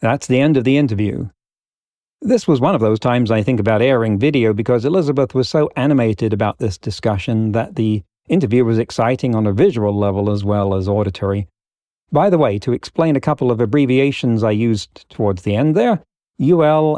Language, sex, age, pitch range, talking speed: English, male, 40-59, 105-130 Hz, 190 wpm